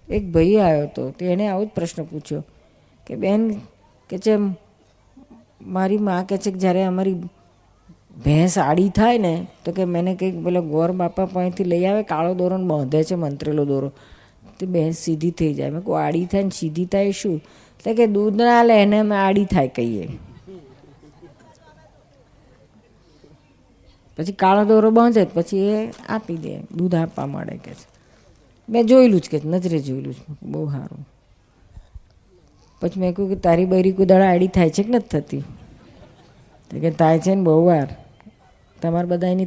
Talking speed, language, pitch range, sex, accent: 125 wpm, Gujarati, 150-195 Hz, female, native